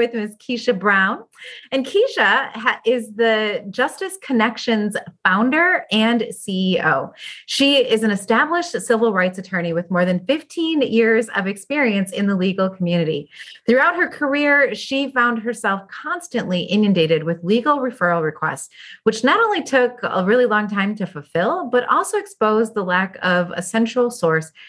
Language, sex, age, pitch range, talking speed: English, female, 30-49, 180-255 Hz, 150 wpm